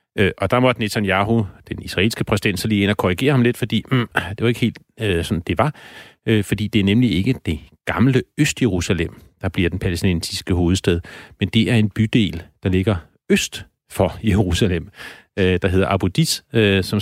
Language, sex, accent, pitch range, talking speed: Danish, male, native, 85-115 Hz, 190 wpm